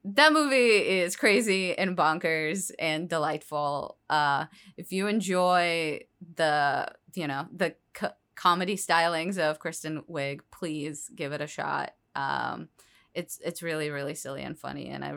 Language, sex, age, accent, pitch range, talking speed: English, female, 20-39, American, 150-180 Hz, 145 wpm